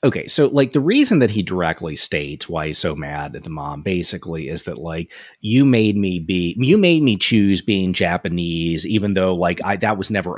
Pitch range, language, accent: 90-125 Hz, English, American